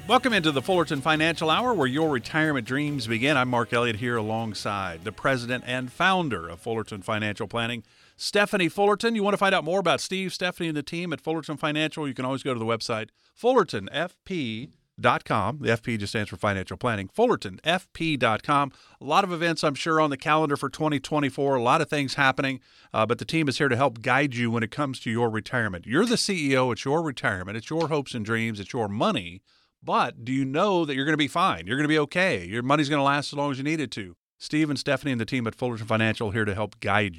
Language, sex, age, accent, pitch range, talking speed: English, male, 50-69, American, 115-155 Hz, 230 wpm